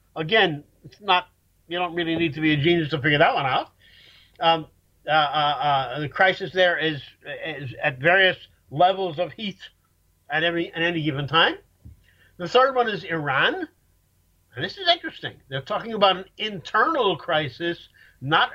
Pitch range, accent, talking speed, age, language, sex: 140-210 Hz, American, 170 wpm, 50-69, English, male